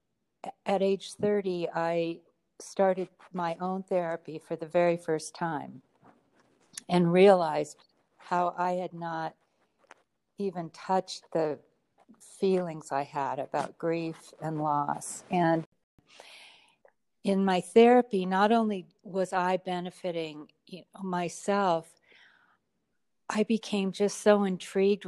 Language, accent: English, American